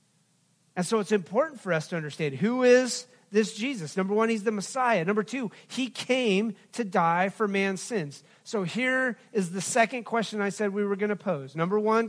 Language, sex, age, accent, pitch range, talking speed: English, male, 40-59, American, 175-220 Hz, 205 wpm